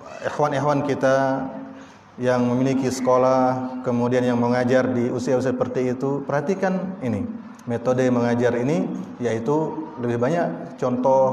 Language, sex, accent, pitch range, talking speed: Indonesian, male, native, 120-195 Hz, 110 wpm